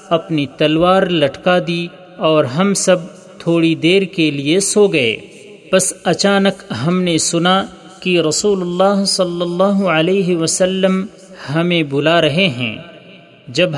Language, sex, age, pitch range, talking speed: Urdu, male, 40-59, 155-190 Hz, 130 wpm